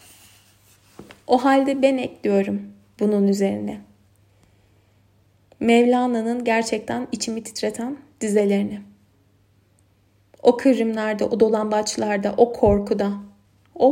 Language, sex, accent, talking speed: Turkish, female, native, 80 wpm